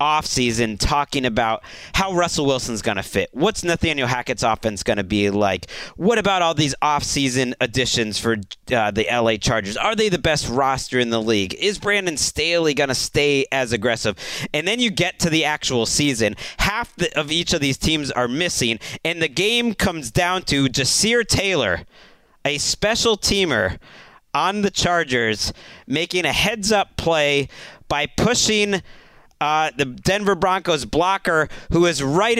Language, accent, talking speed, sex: English, American, 165 wpm, male